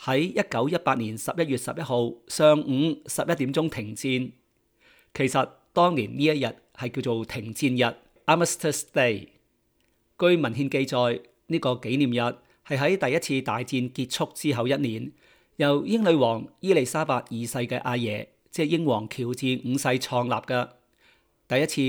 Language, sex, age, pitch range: Chinese, male, 40-59, 120-150 Hz